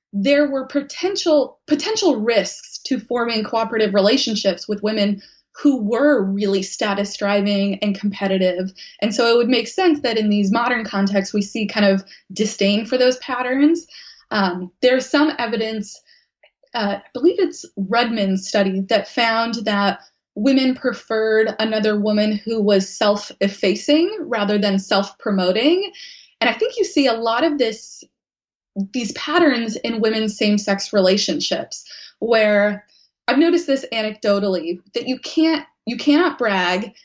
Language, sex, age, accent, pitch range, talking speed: English, female, 20-39, American, 205-260 Hz, 140 wpm